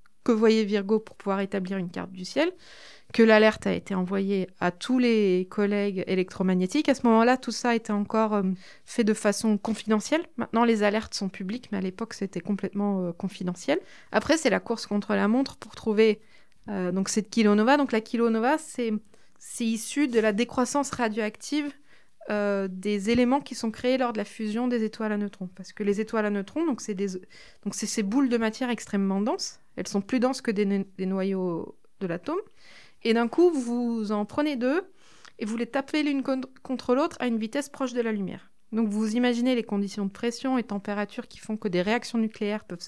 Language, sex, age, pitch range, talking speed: French, female, 20-39, 200-240 Hz, 200 wpm